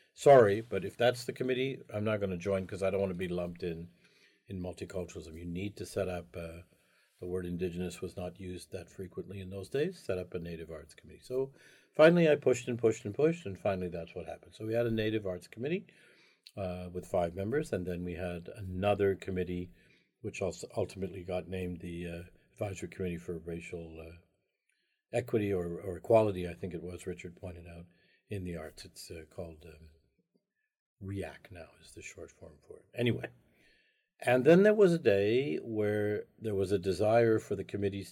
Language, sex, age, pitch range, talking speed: English, male, 50-69, 90-110 Hz, 200 wpm